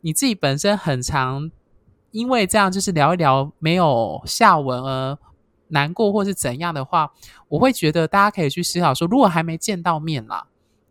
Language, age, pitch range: Chinese, 20-39, 135-195 Hz